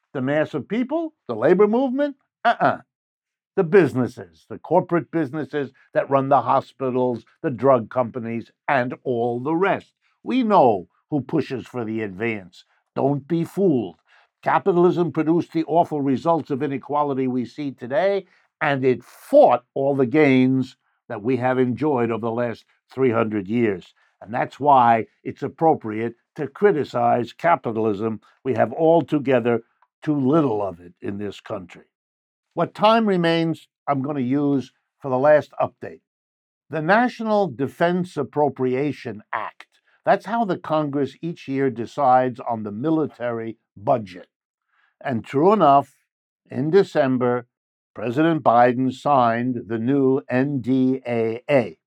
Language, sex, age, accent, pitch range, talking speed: English, male, 60-79, American, 120-160 Hz, 135 wpm